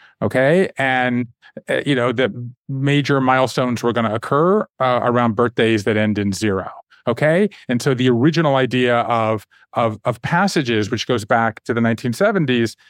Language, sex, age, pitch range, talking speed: English, male, 40-59, 115-150 Hz, 165 wpm